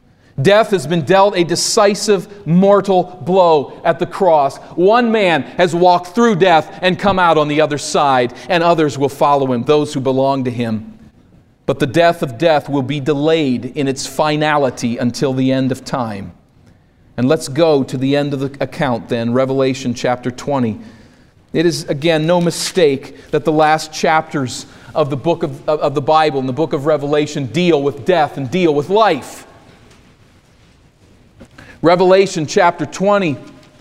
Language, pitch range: English, 135-175 Hz